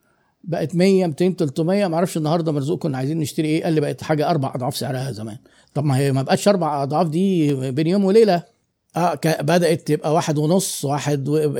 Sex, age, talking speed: male, 50-69, 190 wpm